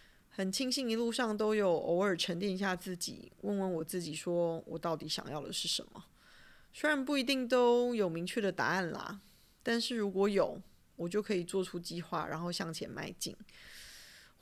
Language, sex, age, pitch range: Chinese, female, 20-39, 175-205 Hz